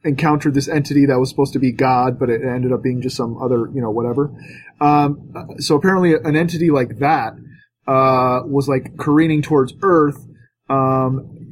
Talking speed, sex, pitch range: 175 wpm, male, 130-155 Hz